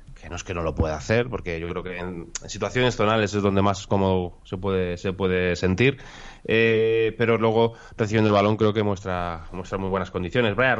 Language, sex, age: Spanish, male, 20-39